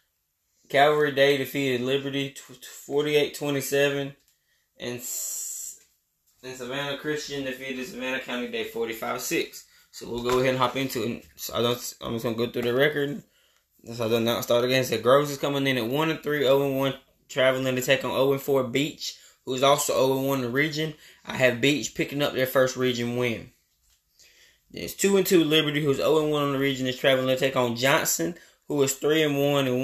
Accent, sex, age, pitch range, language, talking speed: American, male, 10-29, 125-145 Hz, English, 205 wpm